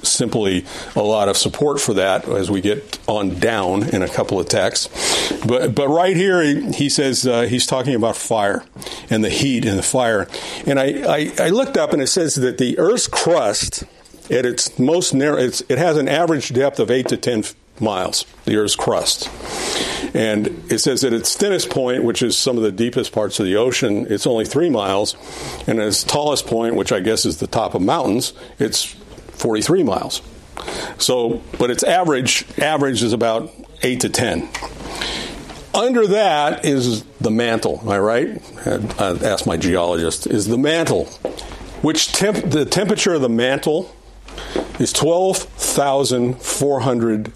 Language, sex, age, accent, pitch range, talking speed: English, male, 50-69, American, 110-145 Hz, 180 wpm